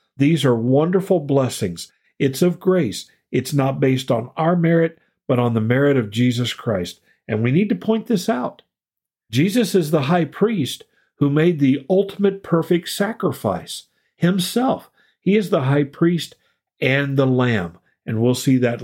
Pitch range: 115-150 Hz